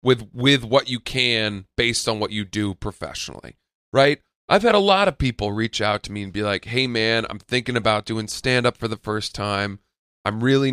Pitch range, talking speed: 100-130 Hz, 220 wpm